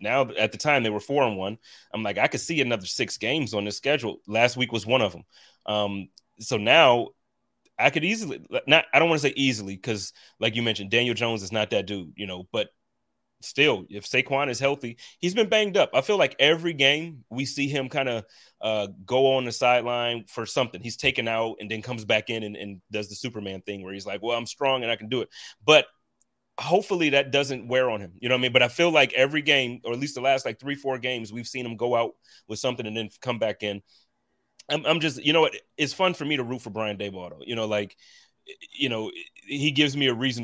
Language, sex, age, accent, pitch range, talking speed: English, male, 30-49, American, 105-135 Hz, 250 wpm